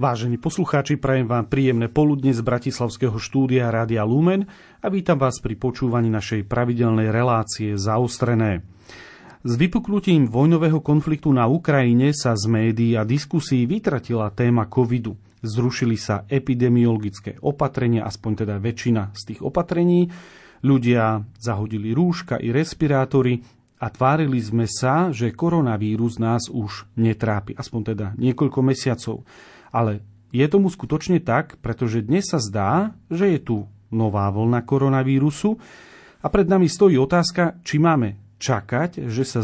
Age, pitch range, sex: 40-59, 115-145 Hz, male